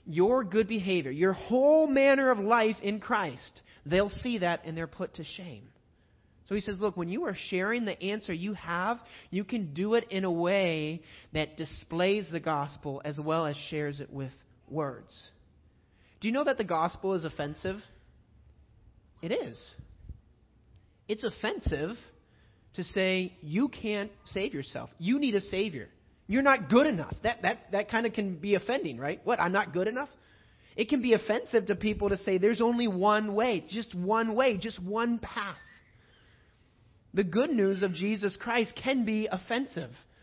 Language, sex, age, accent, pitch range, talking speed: English, male, 30-49, American, 170-225 Hz, 170 wpm